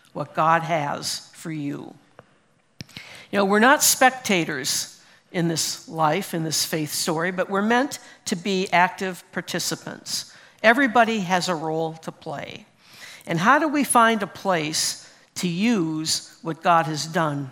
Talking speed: 145 wpm